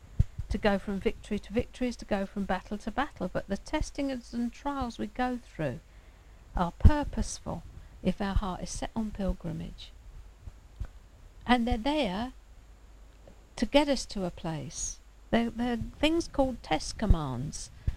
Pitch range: 150-215 Hz